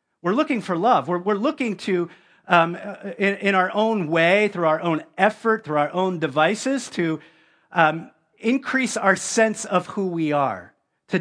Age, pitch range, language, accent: 40-59, 150-205 Hz, English, American